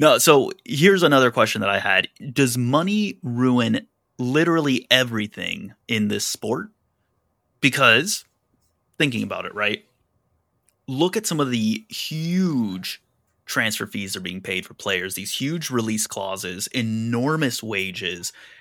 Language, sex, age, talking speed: English, male, 30-49, 130 wpm